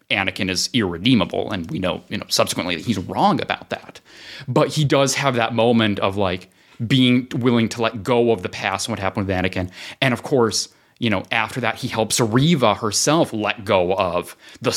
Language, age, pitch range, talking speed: English, 30-49, 95-120 Hz, 205 wpm